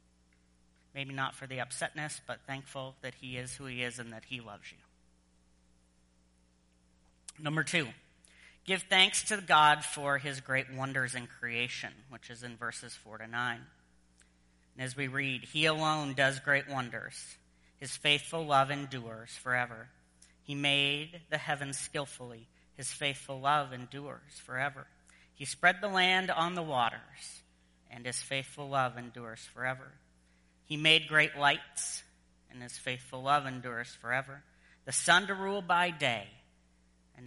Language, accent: English, American